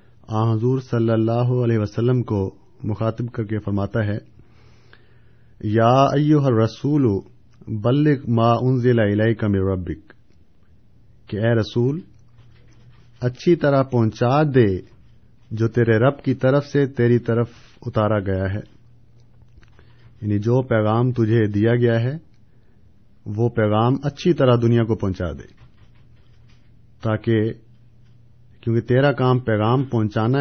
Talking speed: 120 wpm